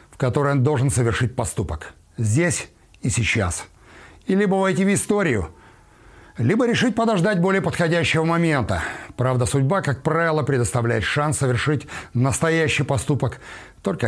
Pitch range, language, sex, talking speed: 120-180 Hz, Russian, male, 125 wpm